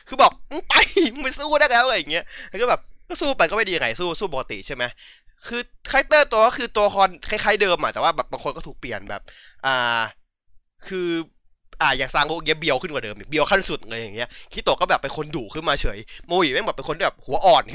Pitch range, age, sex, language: 165-235 Hz, 20-39, male, Thai